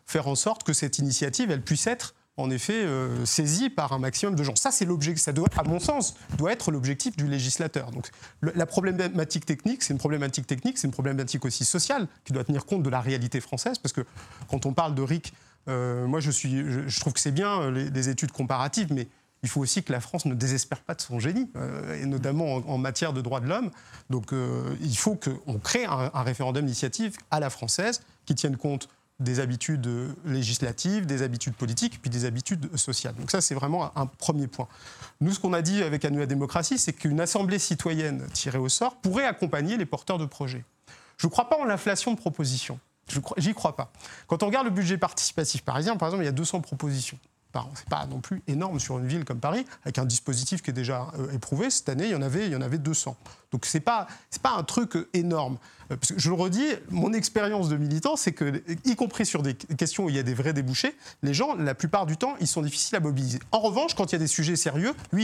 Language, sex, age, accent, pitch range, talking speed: French, male, 30-49, French, 135-180 Hz, 235 wpm